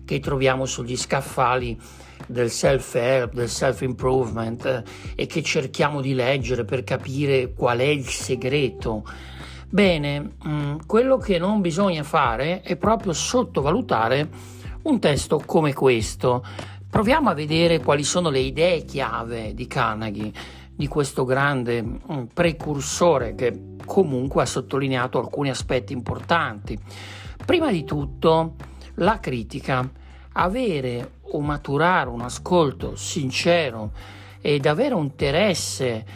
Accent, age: native, 60-79